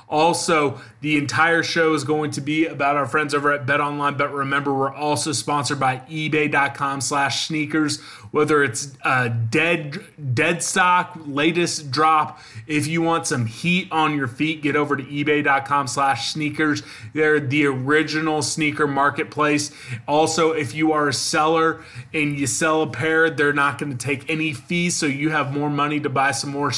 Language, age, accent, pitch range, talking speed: English, 20-39, American, 140-155 Hz, 175 wpm